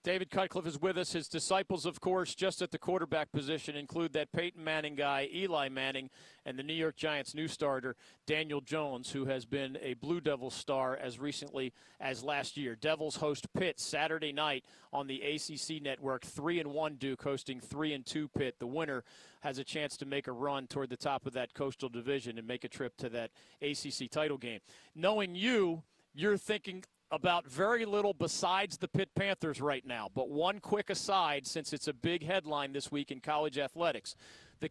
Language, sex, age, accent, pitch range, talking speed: English, male, 40-59, American, 140-185 Hz, 195 wpm